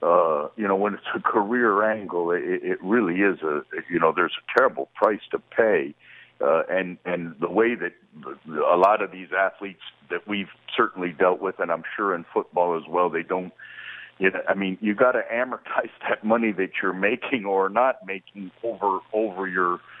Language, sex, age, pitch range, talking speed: English, male, 60-79, 95-120 Hz, 190 wpm